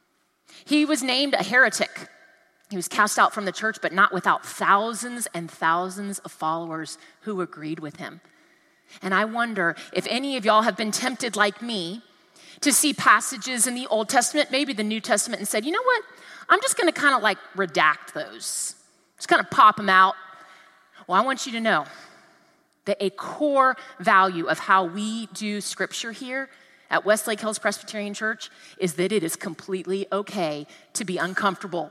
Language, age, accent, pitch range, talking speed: English, 30-49, American, 185-250 Hz, 180 wpm